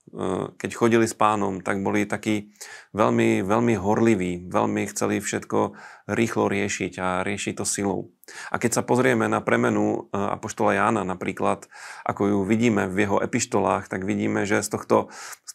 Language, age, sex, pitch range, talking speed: Slovak, 30-49, male, 95-110 Hz, 155 wpm